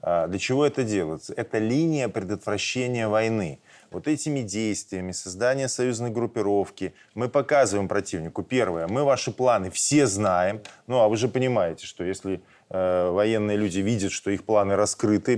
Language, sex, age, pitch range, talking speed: Russian, male, 20-39, 105-130 Hz, 150 wpm